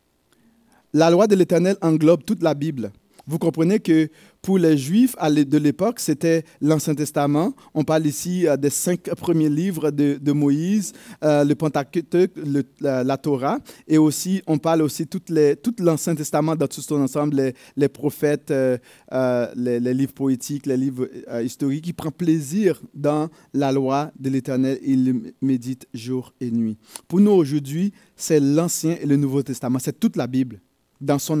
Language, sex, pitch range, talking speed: French, male, 140-170 Hz, 175 wpm